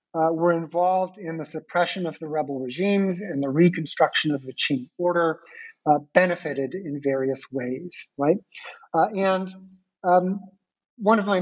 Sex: male